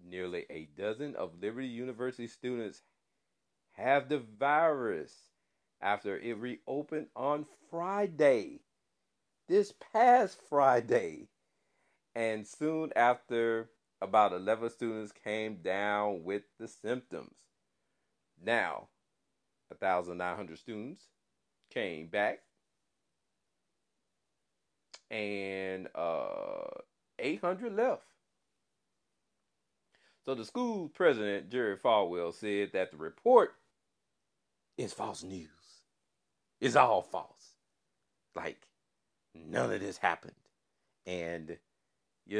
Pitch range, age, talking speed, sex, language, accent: 90-130 Hz, 40-59, 85 wpm, male, English, American